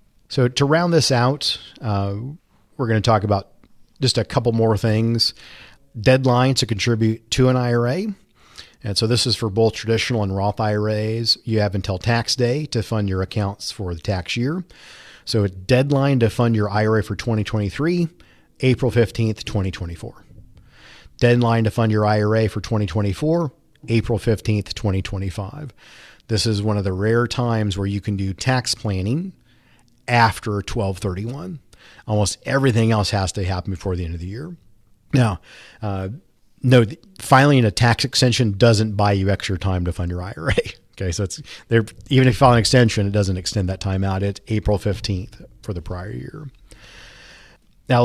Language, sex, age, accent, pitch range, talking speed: English, male, 40-59, American, 100-120 Hz, 165 wpm